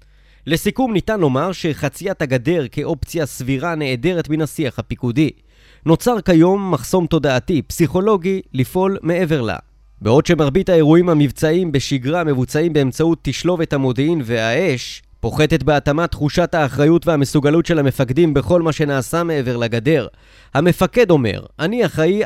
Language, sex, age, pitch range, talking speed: Hebrew, male, 30-49, 130-170 Hz, 120 wpm